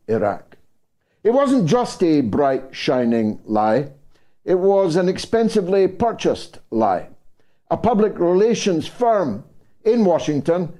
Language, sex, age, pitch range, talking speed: English, male, 60-79, 155-220 Hz, 110 wpm